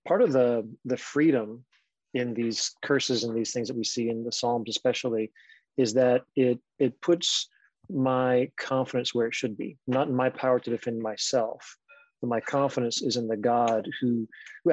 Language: English